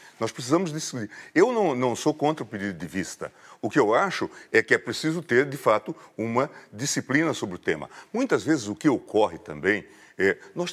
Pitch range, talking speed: 110-160 Hz, 190 wpm